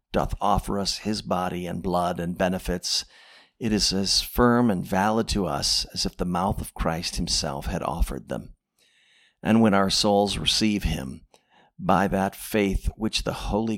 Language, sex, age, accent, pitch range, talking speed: English, male, 50-69, American, 90-110 Hz, 170 wpm